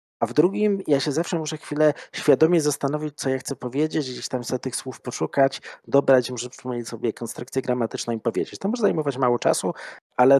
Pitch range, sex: 120-145 Hz, male